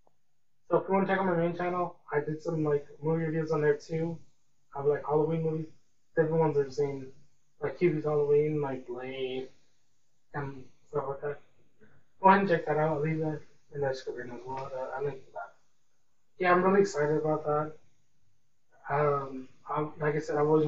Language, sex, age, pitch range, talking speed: English, male, 20-39, 140-165 Hz, 190 wpm